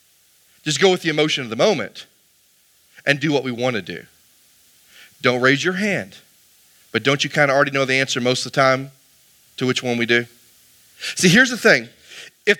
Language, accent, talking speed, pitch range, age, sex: English, American, 200 wpm, 150-225 Hz, 40-59, male